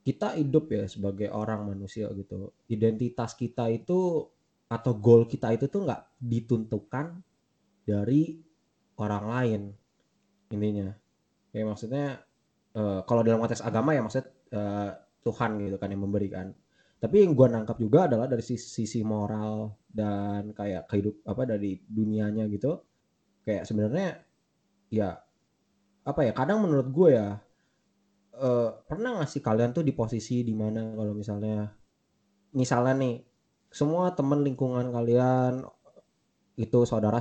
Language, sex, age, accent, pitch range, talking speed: English, male, 20-39, Indonesian, 105-130 Hz, 130 wpm